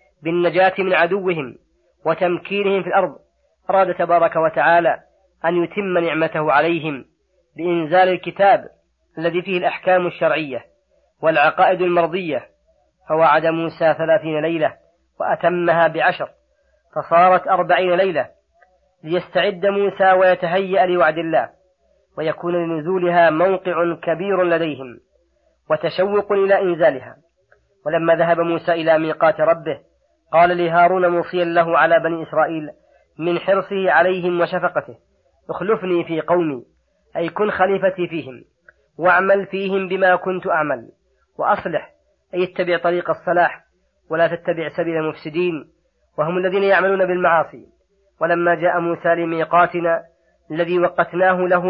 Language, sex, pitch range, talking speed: Arabic, female, 165-185 Hz, 105 wpm